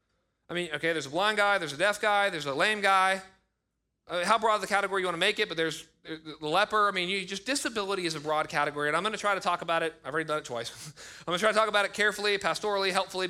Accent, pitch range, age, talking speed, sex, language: American, 135-195 Hz, 30-49, 290 wpm, male, English